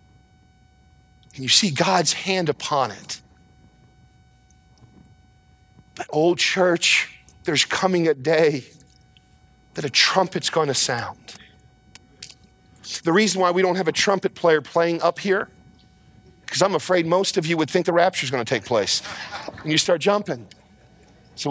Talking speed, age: 140 wpm, 40-59